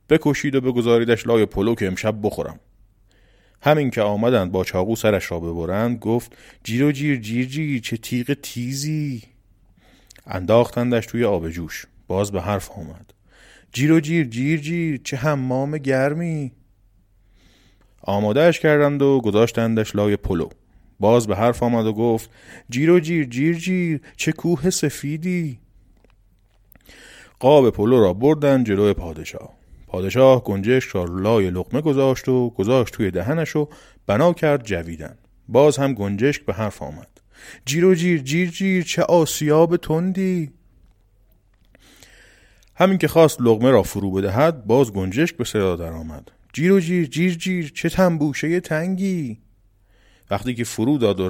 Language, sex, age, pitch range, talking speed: Persian, male, 30-49, 100-155 Hz, 140 wpm